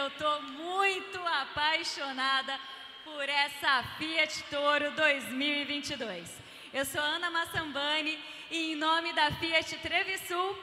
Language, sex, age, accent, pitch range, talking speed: Portuguese, female, 20-39, Brazilian, 280-335 Hz, 105 wpm